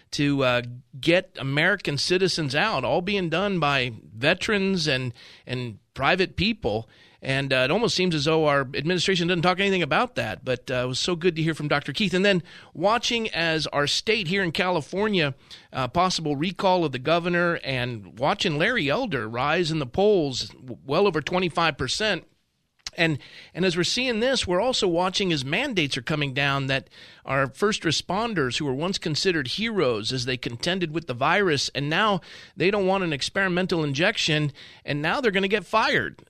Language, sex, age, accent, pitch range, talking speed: English, male, 40-59, American, 140-185 Hz, 185 wpm